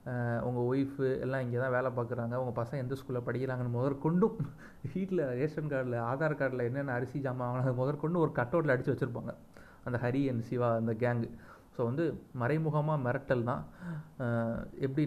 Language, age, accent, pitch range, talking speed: Tamil, 30-49, native, 125-155 Hz, 155 wpm